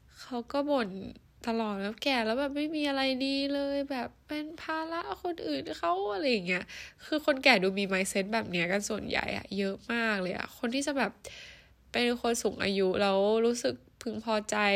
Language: Thai